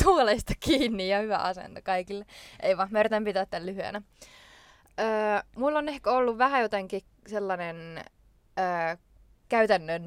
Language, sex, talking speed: English, female, 125 wpm